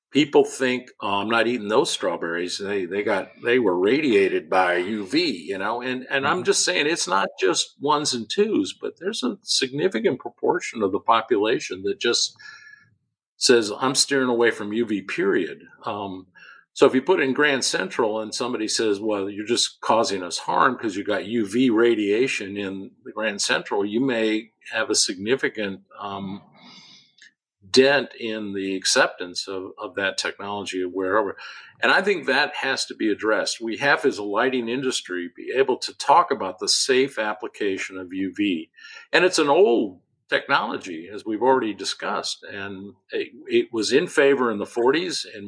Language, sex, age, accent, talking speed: English, male, 50-69, American, 175 wpm